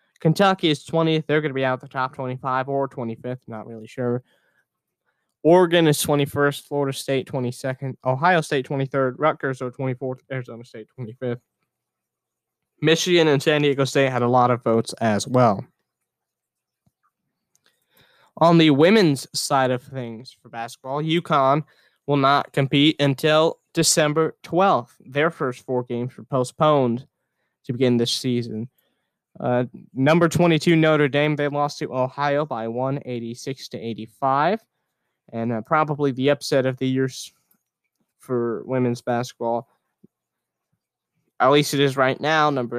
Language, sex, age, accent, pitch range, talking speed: English, male, 20-39, American, 125-150 Hz, 140 wpm